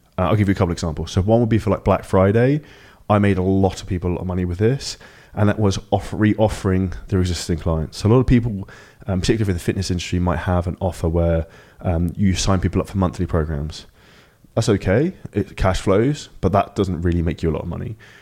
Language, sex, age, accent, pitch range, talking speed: English, male, 20-39, British, 90-105 Hz, 245 wpm